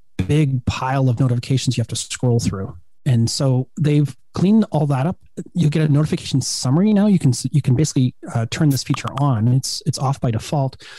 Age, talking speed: 30-49, 200 wpm